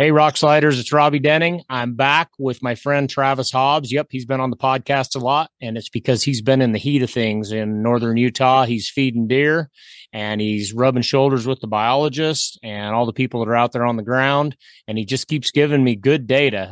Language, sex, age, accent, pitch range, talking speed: English, male, 30-49, American, 110-140 Hz, 225 wpm